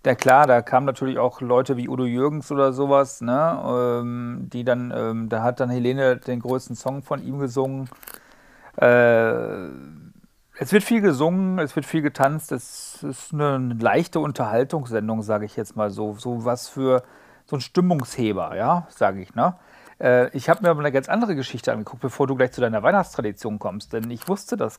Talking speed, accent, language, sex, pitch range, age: 190 wpm, German, German, male, 120-145 Hz, 50-69